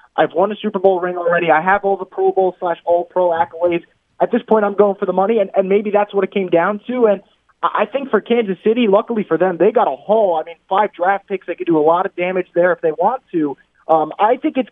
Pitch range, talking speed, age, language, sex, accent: 170-210 Hz, 275 wpm, 20-39, English, male, American